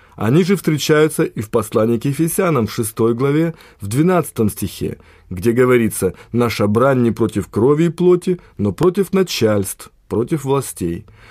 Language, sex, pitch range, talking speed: Russian, male, 110-155 Hz, 150 wpm